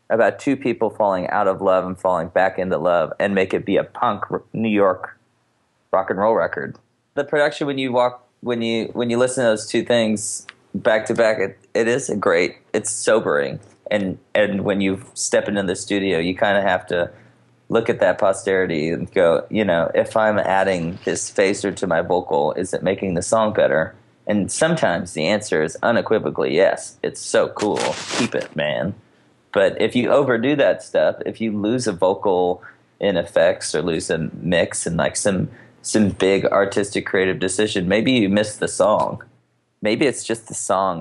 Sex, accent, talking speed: male, American, 190 wpm